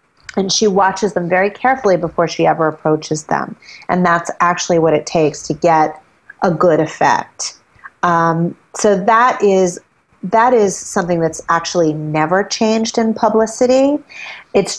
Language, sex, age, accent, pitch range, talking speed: English, female, 30-49, American, 155-185 Hz, 140 wpm